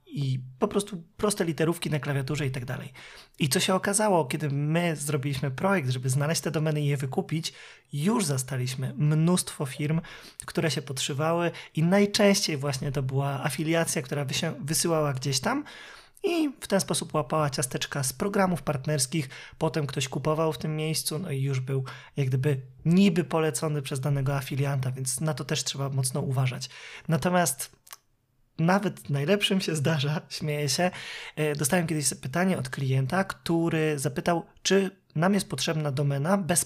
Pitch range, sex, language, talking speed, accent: 145-185 Hz, male, Polish, 155 wpm, native